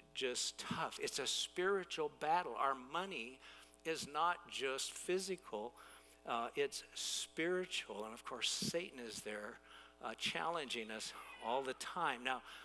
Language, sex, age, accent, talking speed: English, male, 60-79, American, 135 wpm